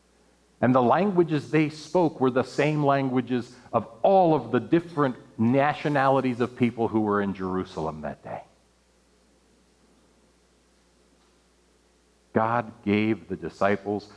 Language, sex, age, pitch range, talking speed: English, male, 40-59, 95-125 Hz, 115 wpm